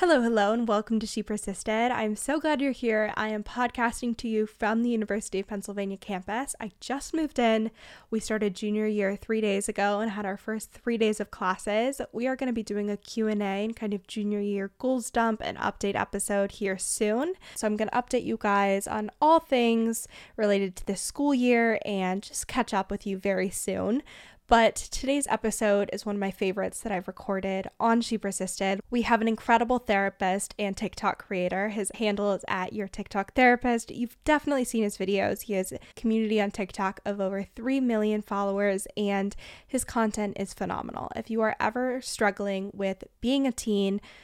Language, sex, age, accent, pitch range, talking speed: English, female, 10-29, American, 200-235 Hz, 195 wpm